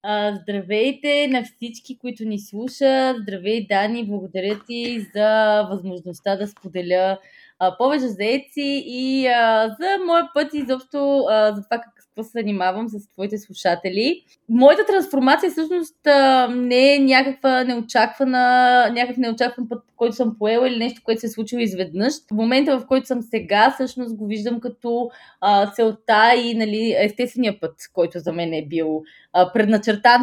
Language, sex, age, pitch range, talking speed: Bulgarian, female, 20-39, 210-260 Hz, 140 wpm